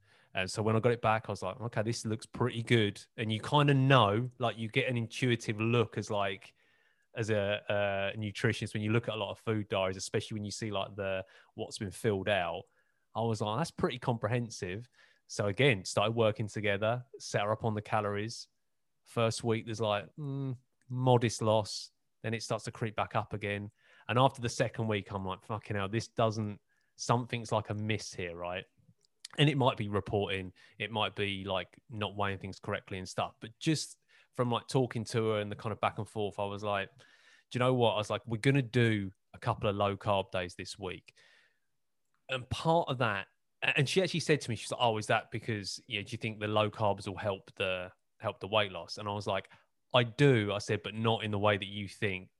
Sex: male